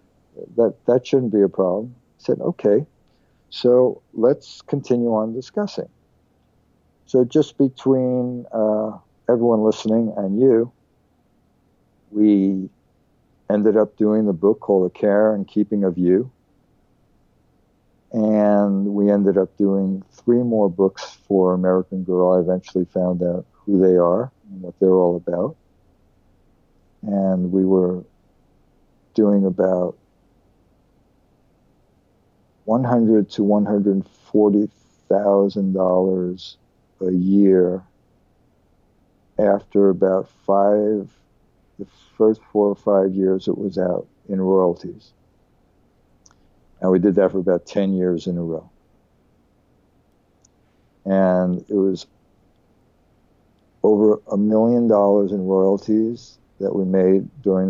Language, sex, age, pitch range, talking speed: English, male, 60-79, 90-105 Hz, 110 wpm